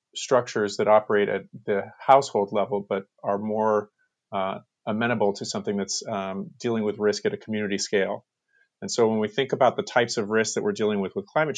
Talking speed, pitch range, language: 200 wpm, 100-140 Hz, English